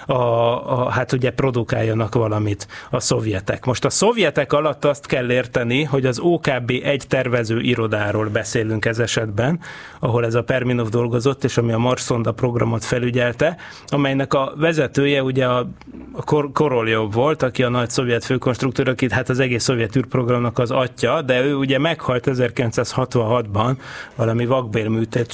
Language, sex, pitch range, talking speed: Hungarian, male, 115-135 Hz, 150 wpm